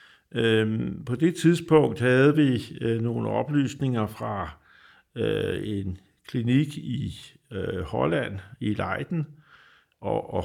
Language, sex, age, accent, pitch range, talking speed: Danish, male, 50-69, native, 105-135 Hz, 115 wpm